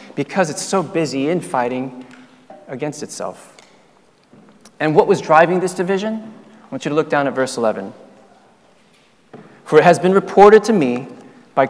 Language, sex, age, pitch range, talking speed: English, male, 30-49, 135-205 Hz, 155 wpm